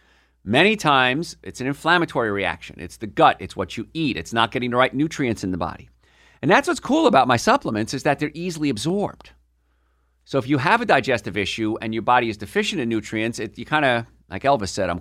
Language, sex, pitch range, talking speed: English, male, 90-130 Hz, 220 wpm